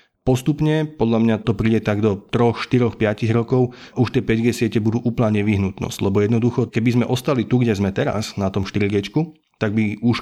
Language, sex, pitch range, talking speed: Slovak, male, 105-120 Hz, 195 wpm